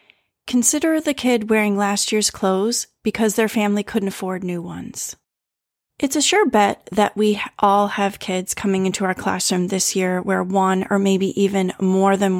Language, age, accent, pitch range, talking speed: English, 30-49, American, 185-215 Hz, 175 wpm